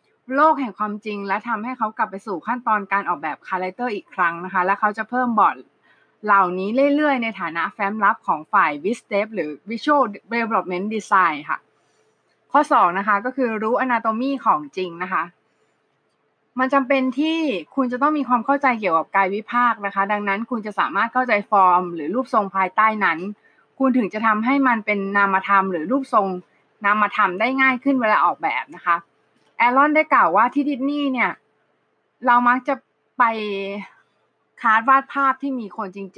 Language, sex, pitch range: Thai, female, 195-255 Hz